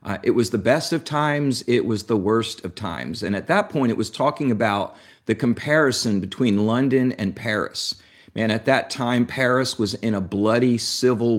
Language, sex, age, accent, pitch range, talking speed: English, male, 50-69, American, 105-130 Hz, 195 wpm